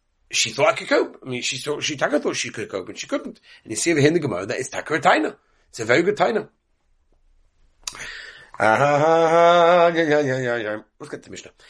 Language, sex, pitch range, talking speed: English, male, 120-165 Hz, 160 wpm